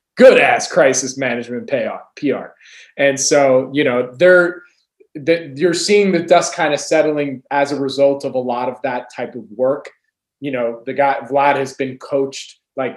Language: English